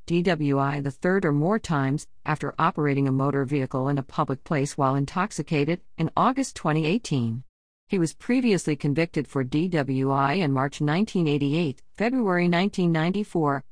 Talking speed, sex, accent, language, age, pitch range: 135 wpm, female, American, English, 50-69, 140-185 Hz